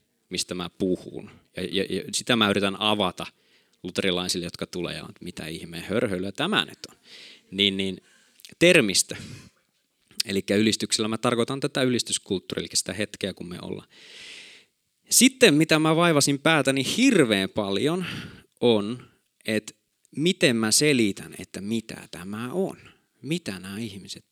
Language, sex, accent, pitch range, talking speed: Finnish, male, native, 105-150 Hz, 140 wpm